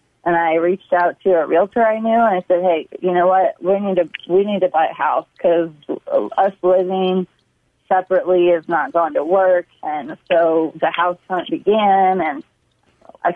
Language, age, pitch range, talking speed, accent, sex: English, 30-49, 170-190 Hz, 190 wpm, American, female